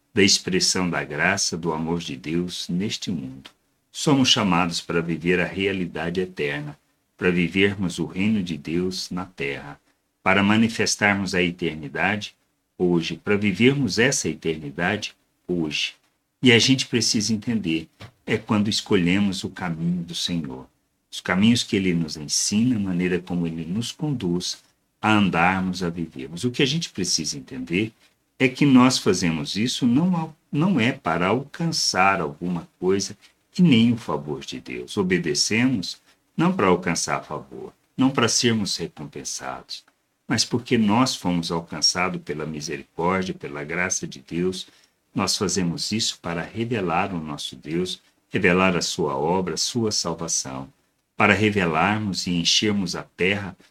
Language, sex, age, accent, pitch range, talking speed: Portuguese, male, 60-79, Brazilian, 85-115 Hz, 145 wpm